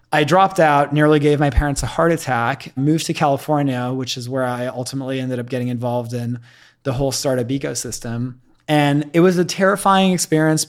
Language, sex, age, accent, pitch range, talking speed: English, male, 20-39, American, 130-150 Hz, 185 wpm